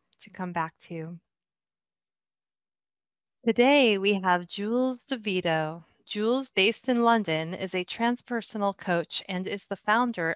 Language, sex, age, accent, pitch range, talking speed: English, female, 30-49, American, 180-220 Hz, 120 wpm